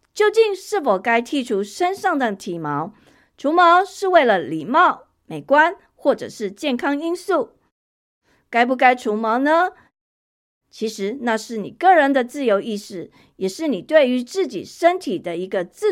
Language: Chinese